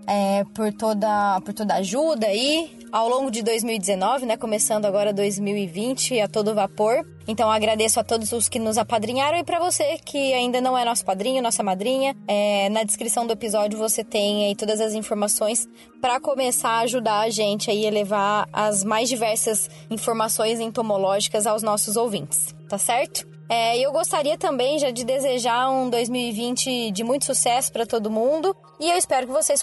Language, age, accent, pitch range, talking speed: Portuguese, 20-39, Brazilian, 210-250 Hz, 180 wpm